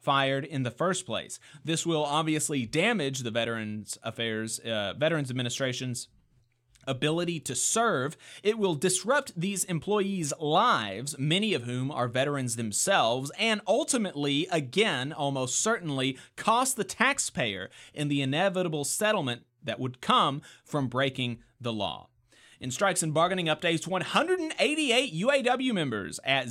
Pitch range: 125-195 Hz